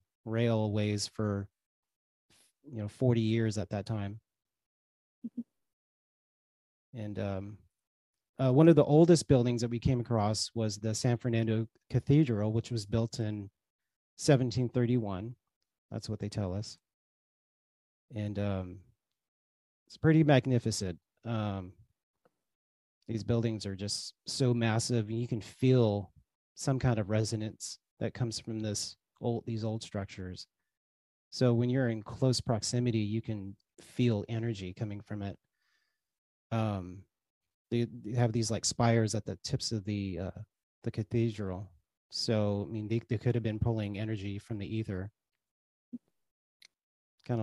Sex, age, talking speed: male, 30-49, 135 wpm